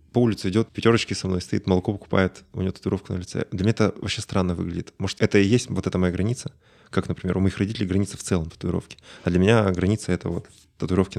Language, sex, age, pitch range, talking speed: Russian, male, 20-39, 90-110 Hz, 235 wpm